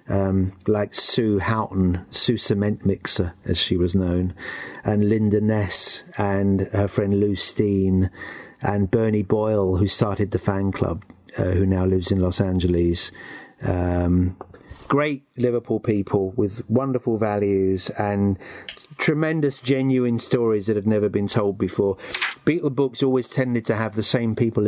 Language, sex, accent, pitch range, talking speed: English, male, British, 95-115 Hz, 145 wpm